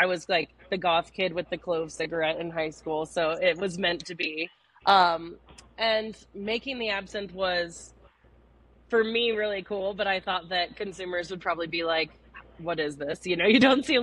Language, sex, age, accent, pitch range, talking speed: English, female, 20-39, American, 170-220 Hz, 200 wpm